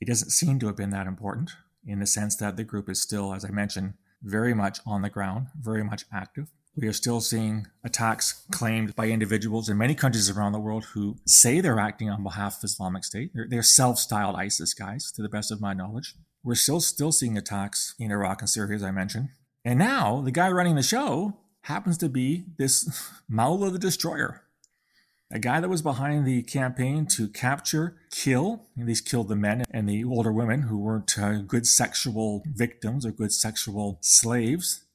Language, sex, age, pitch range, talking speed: English, male, 30-49, 105-135 Hz, 195 wpm